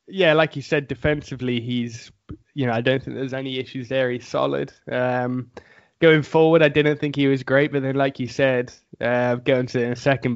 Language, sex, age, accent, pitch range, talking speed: English, male, 20-39, British, 125-150 Hz, 225 wpm